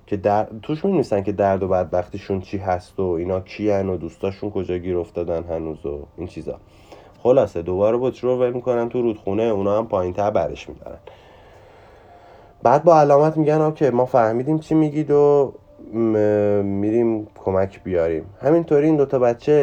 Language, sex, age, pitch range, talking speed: Persian, male, 30-49, 100-130 Hz, 175 wpm